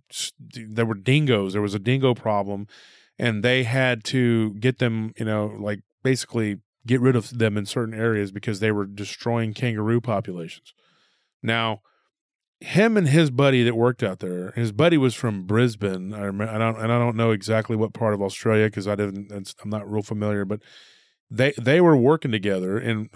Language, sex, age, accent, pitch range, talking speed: English, male, 30-49, American, 105-125 Hz, 190 wpm